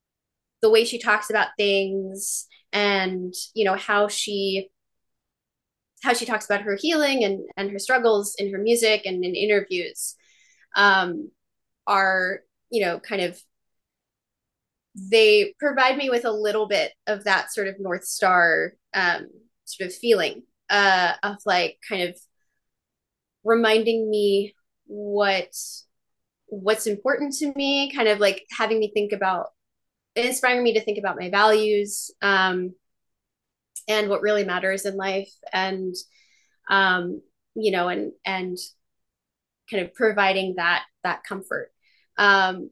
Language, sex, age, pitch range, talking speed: English, female, 20-39, 195-230 Hz, 135 wpm